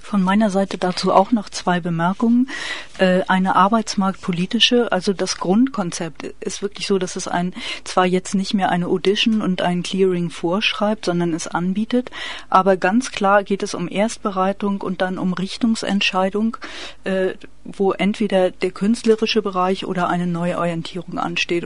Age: 40-59